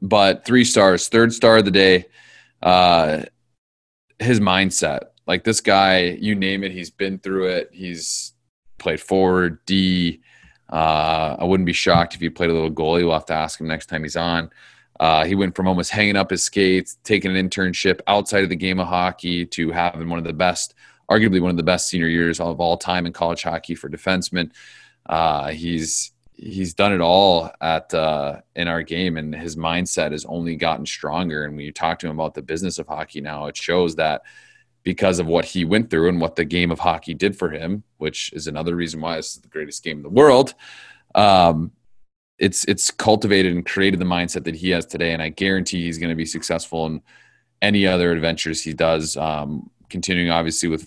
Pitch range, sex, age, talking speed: 80-95 Hz, male, 30-49, 205 wpm